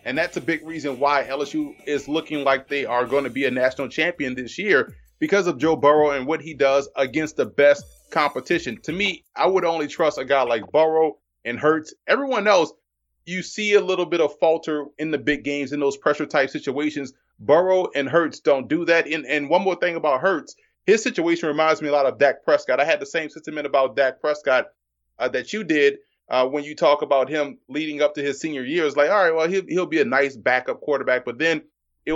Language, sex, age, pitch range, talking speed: English, male, 30-49, 140-165 Hz, 230 wpm